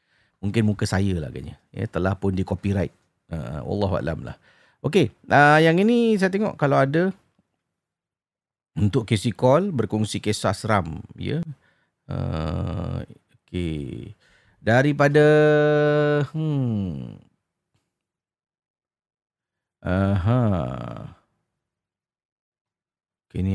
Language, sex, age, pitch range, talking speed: Malay, male, 40-59, 90-115 Hz, 85 wpm